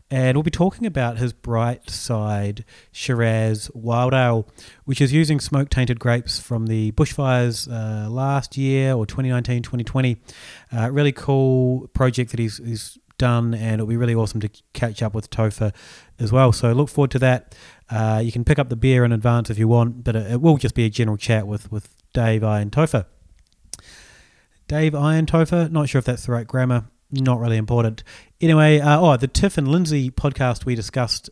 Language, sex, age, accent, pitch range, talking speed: English, male, 30-49, Australian, 110-130 Hz, 190 wpm